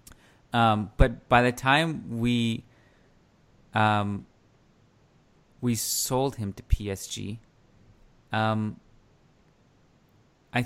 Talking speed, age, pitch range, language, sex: 80 wpm, 30-49, 100-120 Hz, English, male